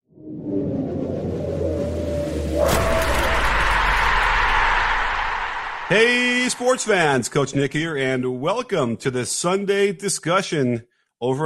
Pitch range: 110-135 Hz